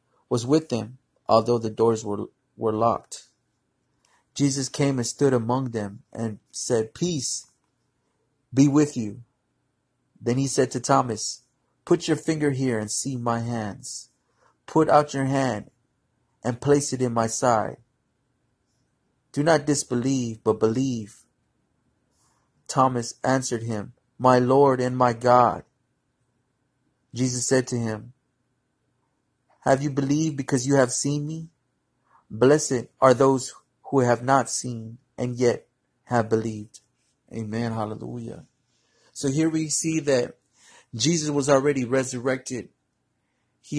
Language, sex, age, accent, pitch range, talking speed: English, male, 30-49, American, 120-140 Hz, 125 wpm